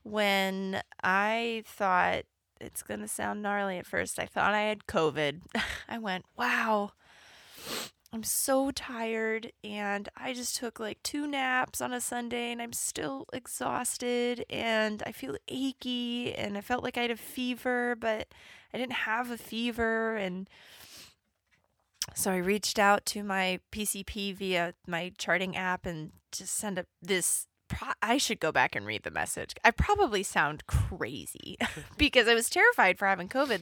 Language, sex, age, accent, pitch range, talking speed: English, female, 20-39, American, 185-235 Hz, 160 wpm